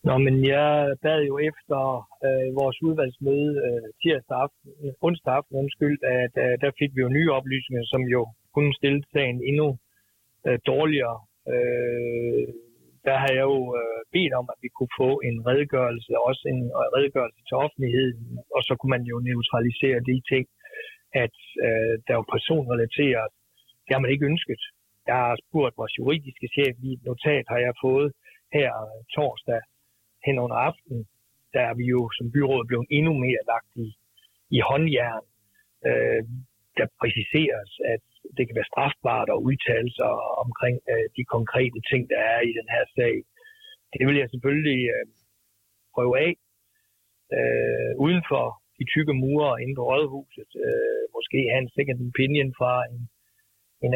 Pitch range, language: 120-145 Hz, Danish